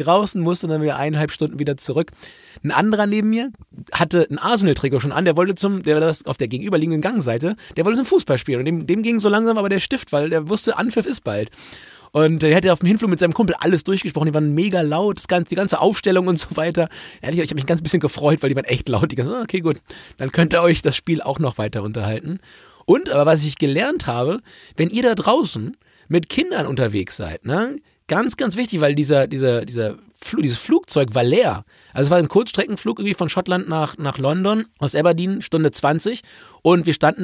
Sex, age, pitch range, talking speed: male, 30-49, 140-185 Hz, 235 wpm